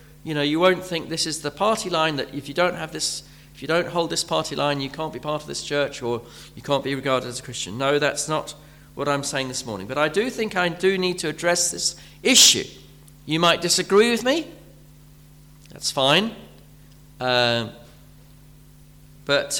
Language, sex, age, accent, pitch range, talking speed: English, male, 40-59, British, 145-175 Hz, 200 wpm